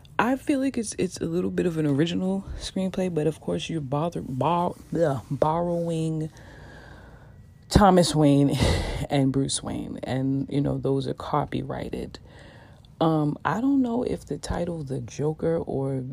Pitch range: 125-155 Hz